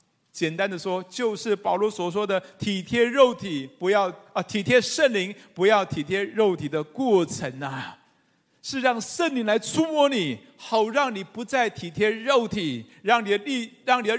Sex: male